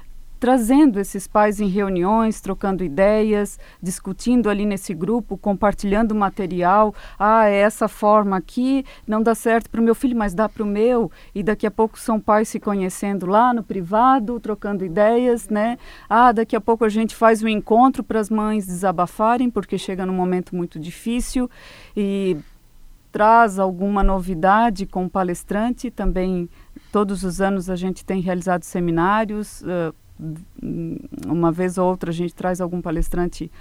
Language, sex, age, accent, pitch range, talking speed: Portuguese, female, 40-59, Brazilian, 180-225 Hz, 160 wpm